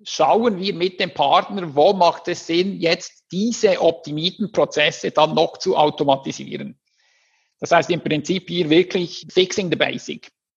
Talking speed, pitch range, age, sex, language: 150 wpm, 155-195 Hz, 50-69, male, German